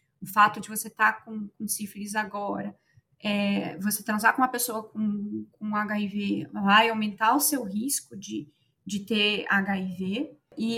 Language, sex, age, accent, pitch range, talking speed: Portuguese, female, 20-39, Brazilian, 200-250 Hz, 145 wpm